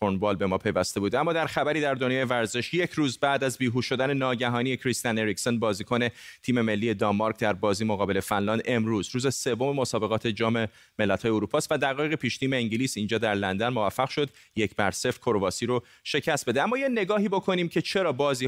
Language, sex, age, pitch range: Persian, male, 30-49, 110-145 Hz